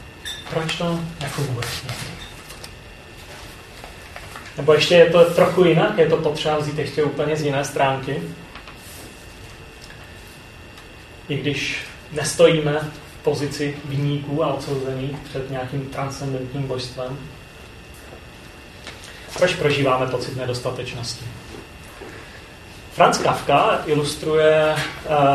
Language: Czech